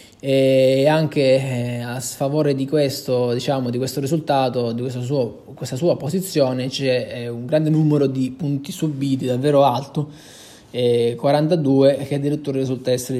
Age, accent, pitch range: 20-39, native, 130-155 Hz